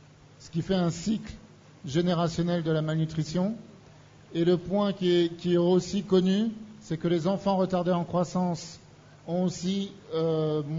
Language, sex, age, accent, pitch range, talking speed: French, male, 50-69, French, 155-185 Hz, 155 wpm